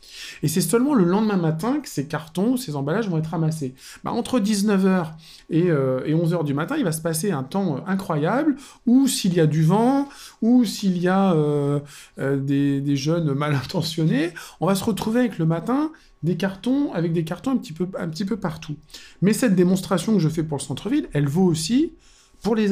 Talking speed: 215 wpm